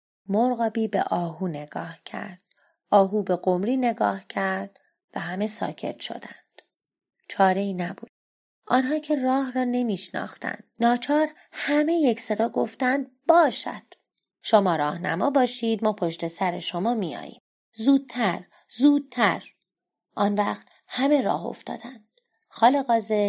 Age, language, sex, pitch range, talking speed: 30-49, Persian, female, 185-250 Hz, 110 wpm